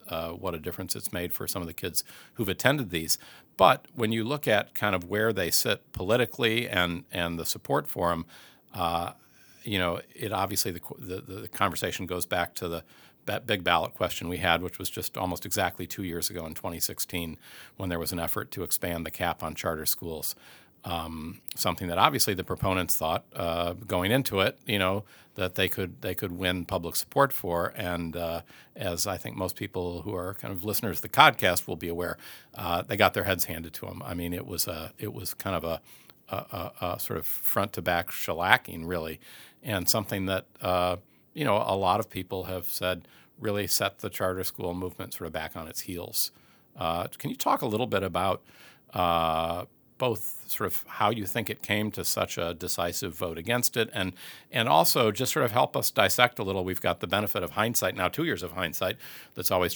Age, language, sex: 50-69, English, male